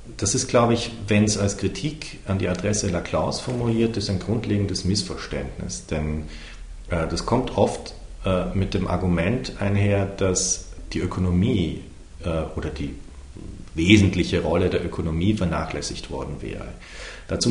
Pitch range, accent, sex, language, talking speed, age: 85-100 Hz, German, male, German, 140 wpm, 40-59